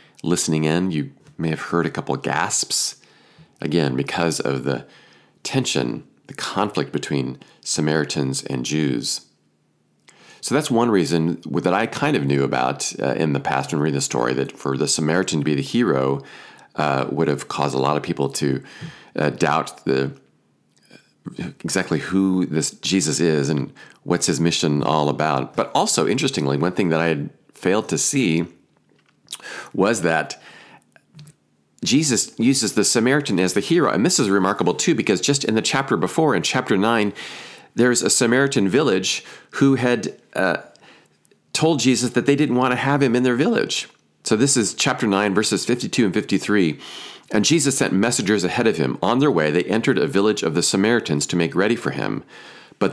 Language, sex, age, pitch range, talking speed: English, male, 40-59, 75-120 Hz, 175 wpm